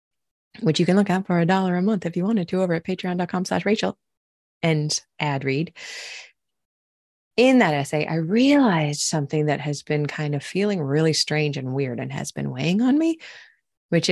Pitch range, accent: 140-195 Hz, American